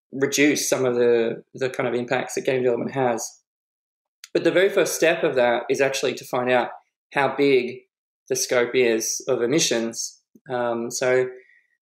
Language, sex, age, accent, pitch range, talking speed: English, male, 20-39, Australian, 120-160 Hz, 170 wpm